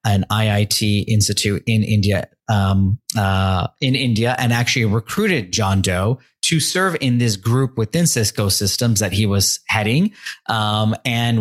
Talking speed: 145 wpm